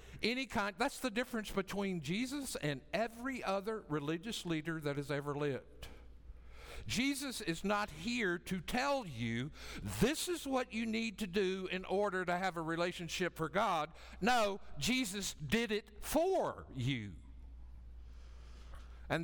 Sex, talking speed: male, 140 wpm